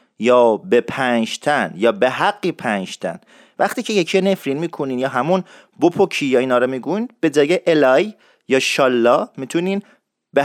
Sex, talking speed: male, 150 wpm